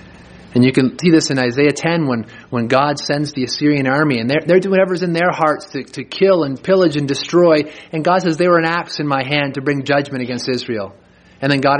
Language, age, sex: English, 30-49, male